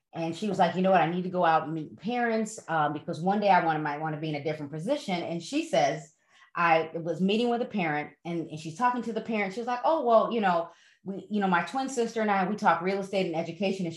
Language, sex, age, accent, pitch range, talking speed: English, female, 30-49, American, 165-215 Hz, 275 wpm